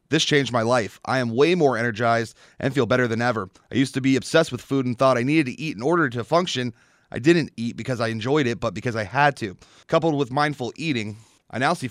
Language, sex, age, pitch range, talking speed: English, male, 30-49, 115-145 Hz, 250 wpm